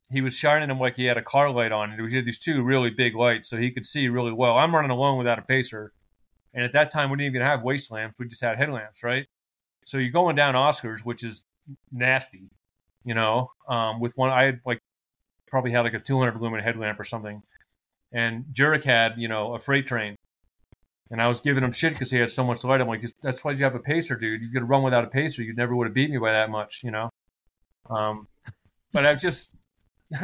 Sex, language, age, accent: male, English, 30-49, American